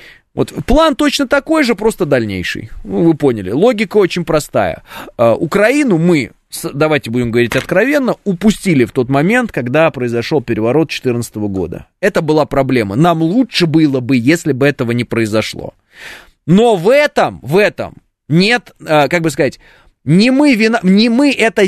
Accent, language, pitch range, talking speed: native, Russian, 125-185 Hz, 145 wpm